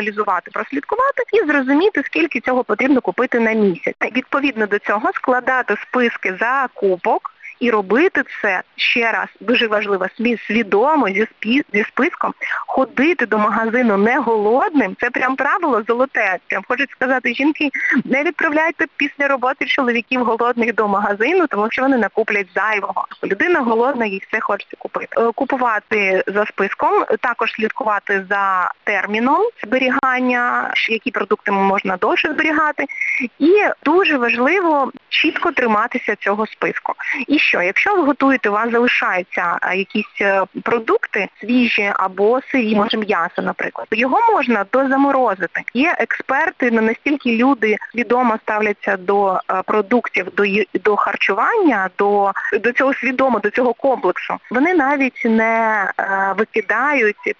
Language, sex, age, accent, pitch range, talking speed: Ukrainian, female, 20-39, native, 210-275 Hz, 125 wpm